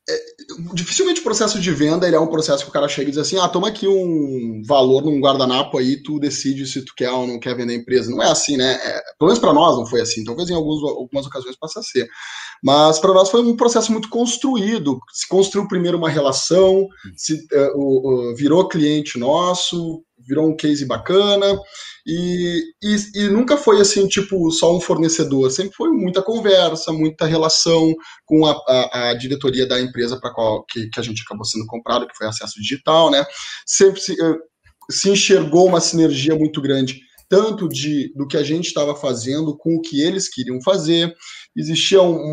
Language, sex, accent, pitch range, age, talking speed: Portuguese, male, Brazilian, 135-185 Hz, 20-39, 195 wpm